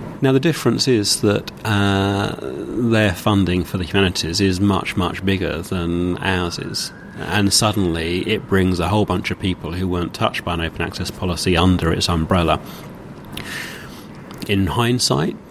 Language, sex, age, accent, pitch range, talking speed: English, male, 30-49, British, 90-105 Hz, 155 wpm